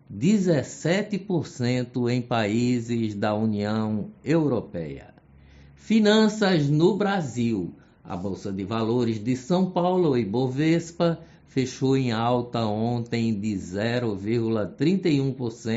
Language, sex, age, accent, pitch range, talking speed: Portuguese, male, 60-79, Brazilian, 110-150 Hz, 85 wpm